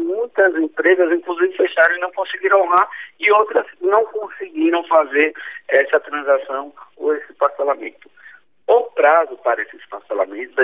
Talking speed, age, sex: 130 wpm, 50-69, male